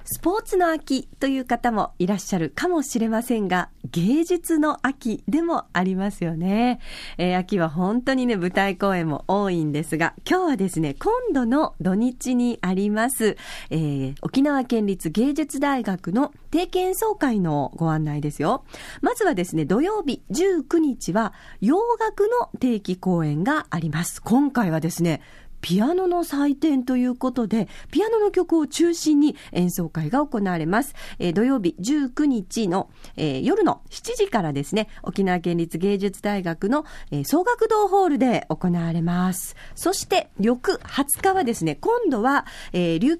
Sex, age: female, 40-59